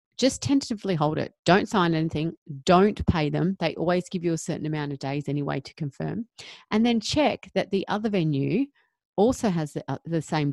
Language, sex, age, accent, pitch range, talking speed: English, female, 30-49, Australian, 145-190 Hz, 200 wpm